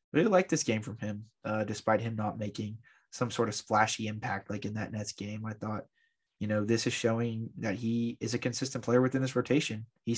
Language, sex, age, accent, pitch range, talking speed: English, male, 20-39, American, 110-120 Hz, 225 wpm